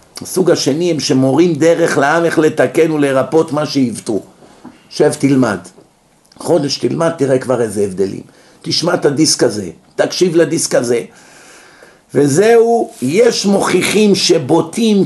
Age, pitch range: 50-69, 135-180 Hz